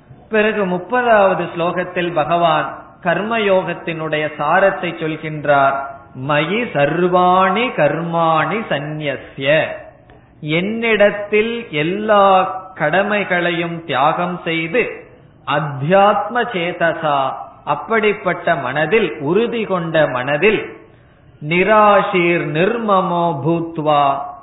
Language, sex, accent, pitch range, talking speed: Tamil, male, native, 155-190 Hz, 50 wpm